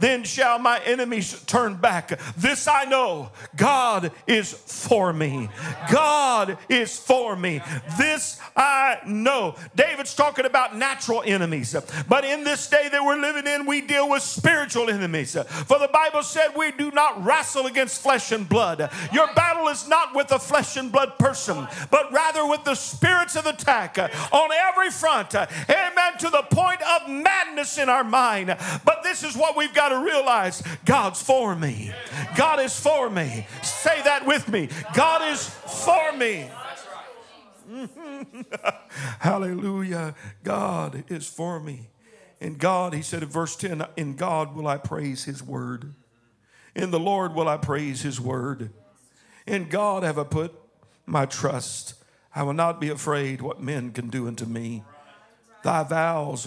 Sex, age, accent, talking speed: male, 50-69, American, 160 wpm